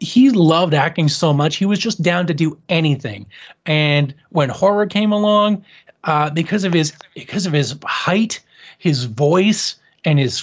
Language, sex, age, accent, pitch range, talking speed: English, male, 30-49, American, 145-190 Hz, 165 wpm